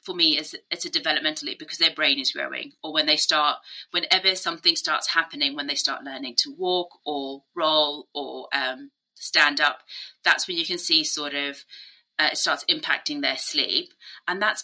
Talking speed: 190 wpm